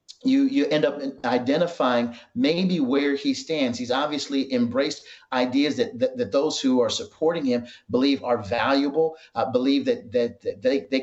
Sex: male